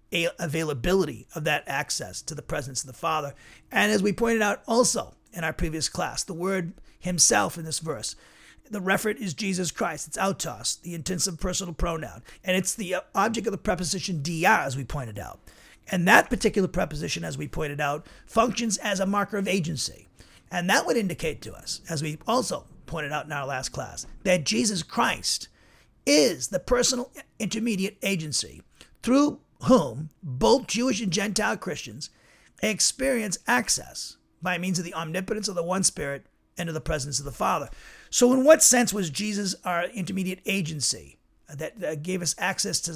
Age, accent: 40-59, American